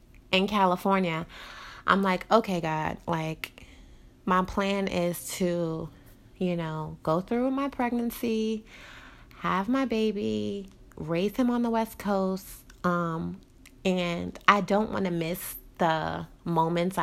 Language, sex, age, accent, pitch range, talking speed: English, female, 20-39, American, 160-185 Hz, 125 wpm